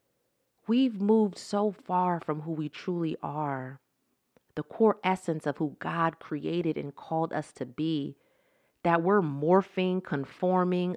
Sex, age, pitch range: female, 30-49, 155-200 Hz